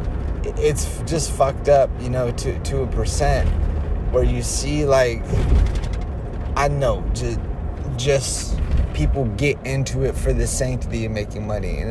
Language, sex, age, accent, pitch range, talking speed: English, male, 30-49, American, 100-130 Hz, 145 wpm